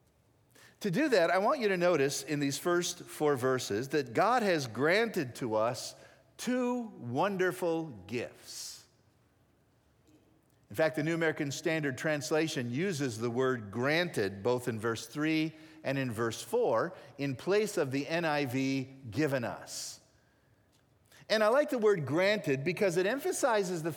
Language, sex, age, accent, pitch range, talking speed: English, male, 50-69, American, 130-195 Hz, 145 wpm